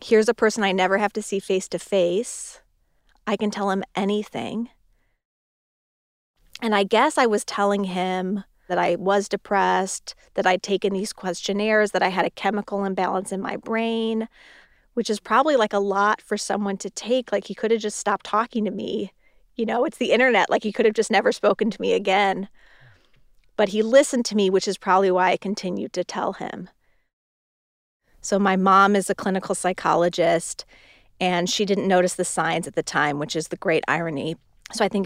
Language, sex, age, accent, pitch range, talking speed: English, female, 30-49, American, 185-215 Hz, 190 wpm